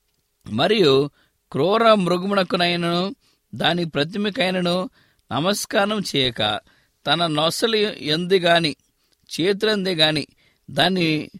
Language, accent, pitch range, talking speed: English, Indian, 130-195 Hz, 85 wpm